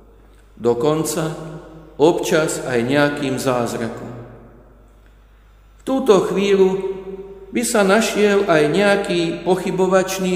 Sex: male